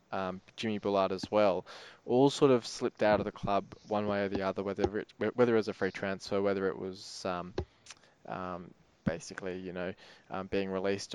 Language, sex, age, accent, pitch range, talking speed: English, male, 20-39, Australian, 100-115 Hz, 200 wpm